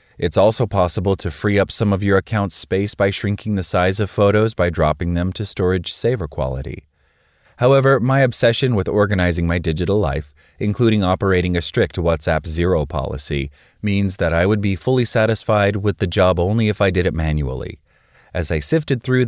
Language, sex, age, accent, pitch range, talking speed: English, male, 30-49, American, 80-110 Hz, 185 wpm